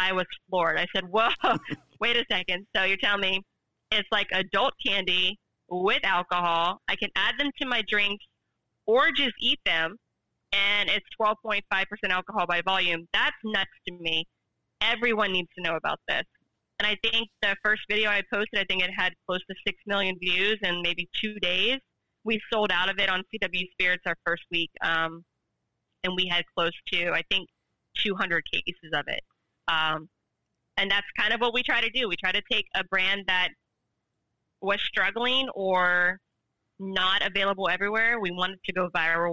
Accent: American